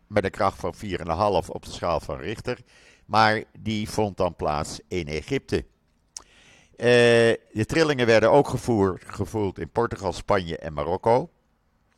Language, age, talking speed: Dutch, 50-69, 140 wpm